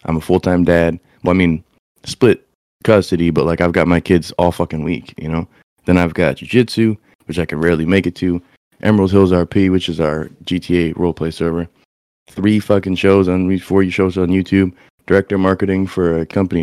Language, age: English, 20-39